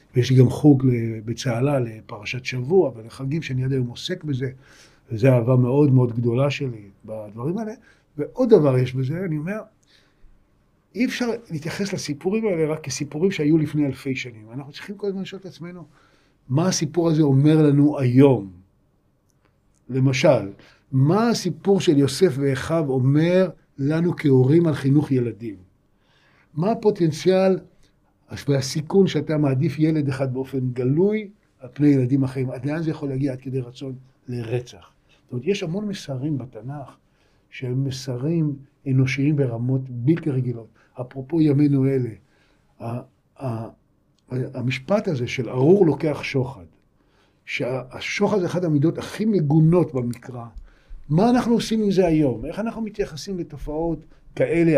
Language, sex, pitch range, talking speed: Hebrew, male, 130-165 Hz, 140 wpm